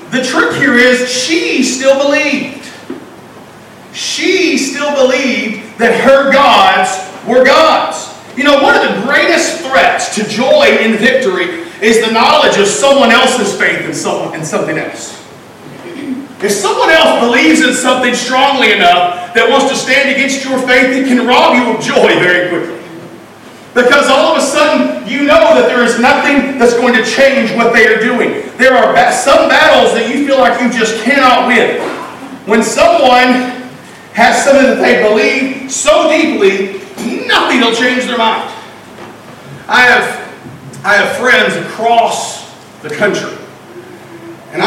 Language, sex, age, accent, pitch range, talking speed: English, male, 40-59, American, 225-275 Hz, 150 wpm